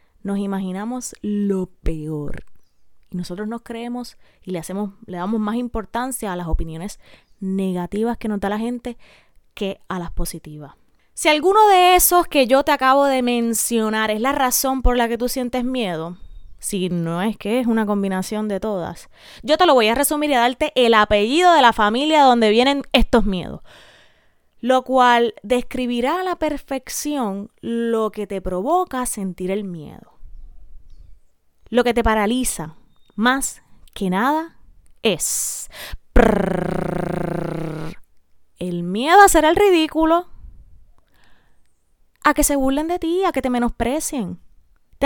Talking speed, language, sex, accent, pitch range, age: 145 wpm, Spanish, female, American, 185-260 Hz, 20-39